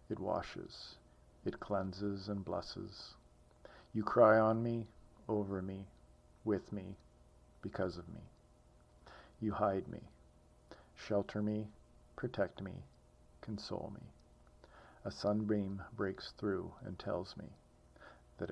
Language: English